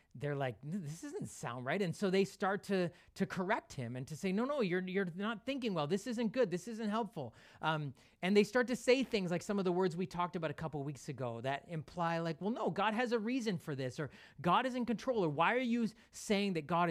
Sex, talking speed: male, 260 wpm